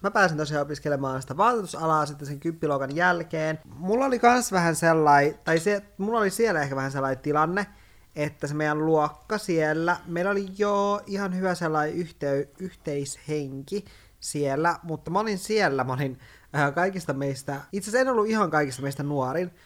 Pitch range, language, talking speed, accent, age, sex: 135-180 Hz, Finnish, 170 wpm, native, 20-39, male